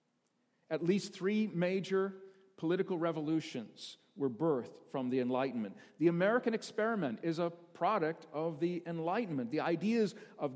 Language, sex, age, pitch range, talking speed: English, male, 50-69, 150-195 Hz, 130 wpm